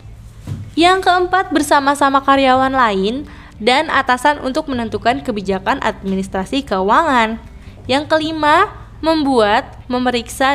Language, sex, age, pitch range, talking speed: Indonesian, female, 20-39, 210-300 Hz, 90 wpm